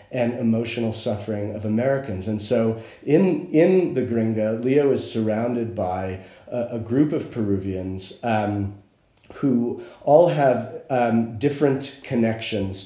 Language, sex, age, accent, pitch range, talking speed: English, male, 40-59, American, 100-115 Hz, 125 wpm